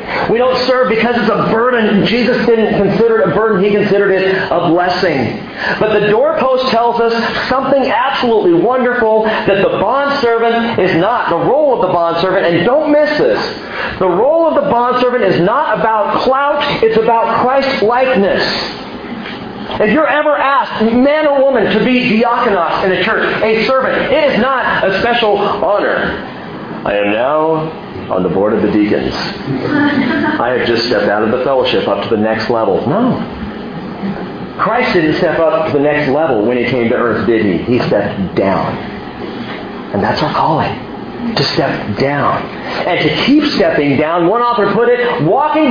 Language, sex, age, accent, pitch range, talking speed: English, male, 40-59, American, 180-250 Hz, 175 wpm